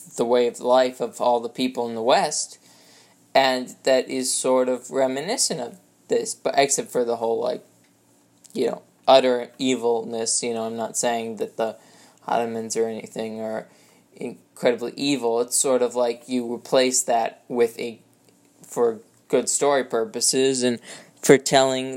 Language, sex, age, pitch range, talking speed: English, male, 20-39, 115-135 Hz, 160 wpm